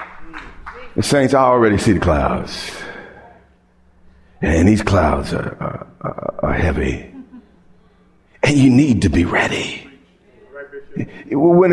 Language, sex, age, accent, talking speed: English, male, 50-69, American, 105 wpm